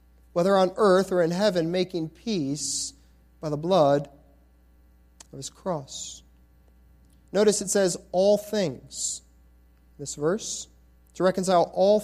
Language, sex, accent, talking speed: English, male, American, 120 wpm